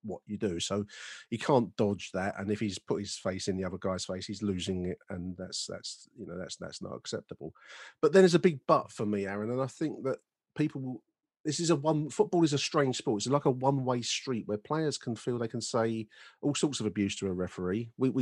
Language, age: English, 40-59